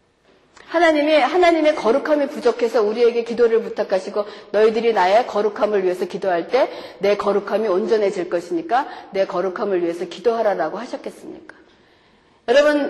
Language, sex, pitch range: Korean, female, 225-330 Hz